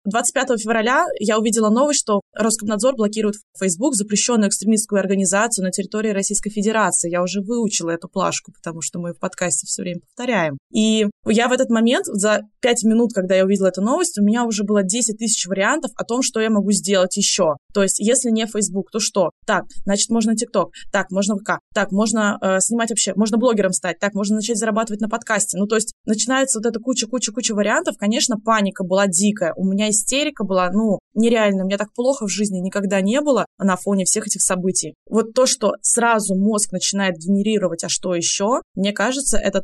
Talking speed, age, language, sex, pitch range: 200 wpm, 20-39, Russian, female, 190-225 Hz